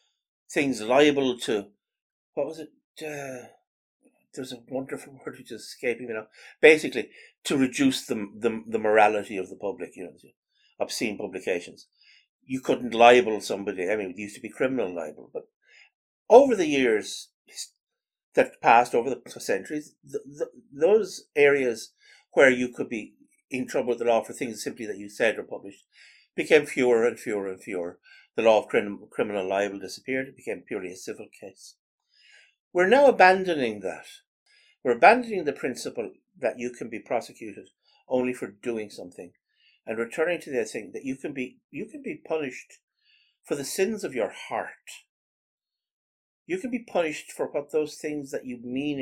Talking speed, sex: 170 wpm, male